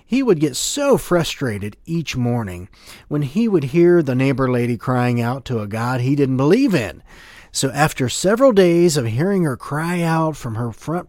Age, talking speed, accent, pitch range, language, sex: 40-59, 190 wpm, American, 120-185 Hz, English, male